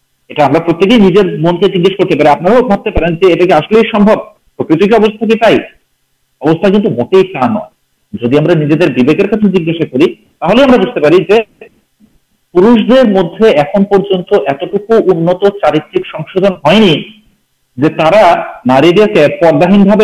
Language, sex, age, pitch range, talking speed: Urdu, male, 50-69, 150-205 Hz, 40 wpm